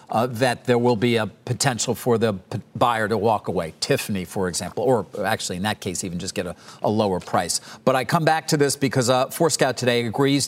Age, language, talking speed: 50-69, English, 230 wpm